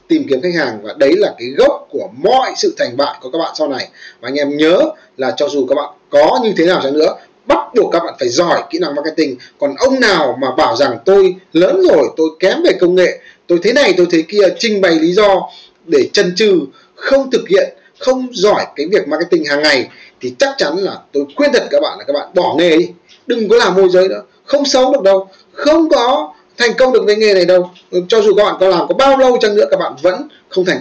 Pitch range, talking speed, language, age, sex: 180-280 Hz, 255 wpm, Vietnamese, 20-39, male